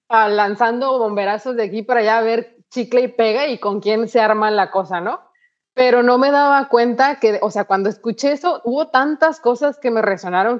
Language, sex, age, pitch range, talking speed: Spanish, female, 30-49, 205-245 Hz, 210 wpm